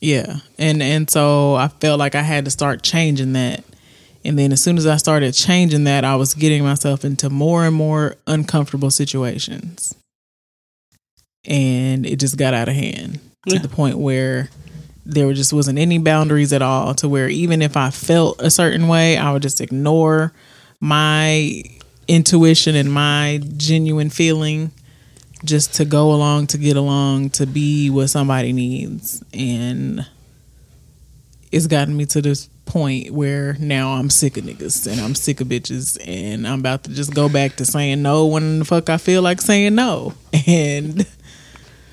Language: English